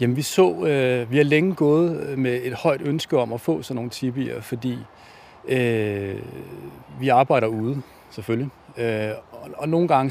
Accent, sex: native, male